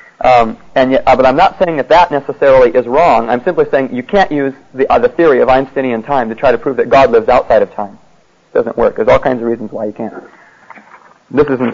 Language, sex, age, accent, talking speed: English, male, 40-59, American, 230 wpm